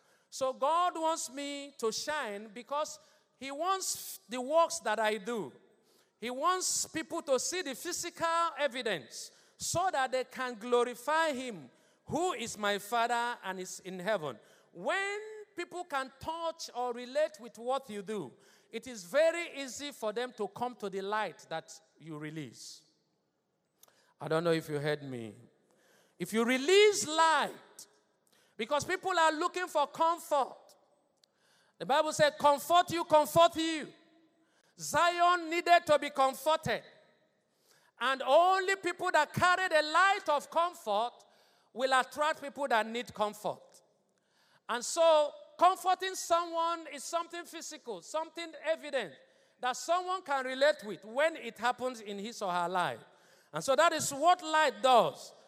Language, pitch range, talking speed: English, 235-335 Hz, 145 wpm